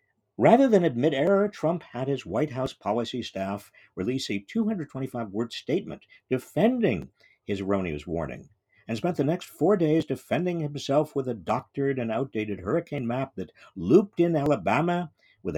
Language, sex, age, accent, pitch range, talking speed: English, male, 50-69, American, 100-160 Hz, 155 wpm